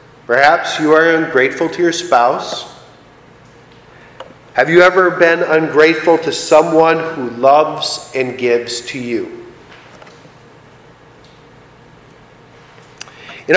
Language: English